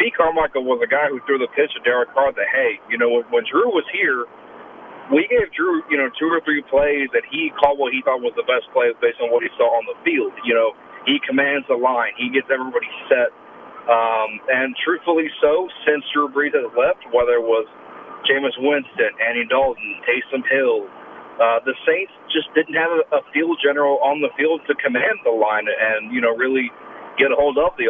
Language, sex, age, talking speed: English, male, 40-59, 215 wpm